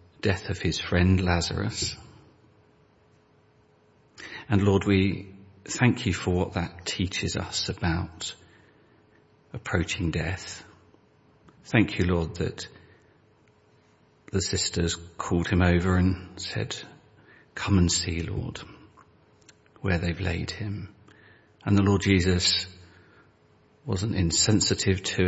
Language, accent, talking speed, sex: English, British, 105 wpm, male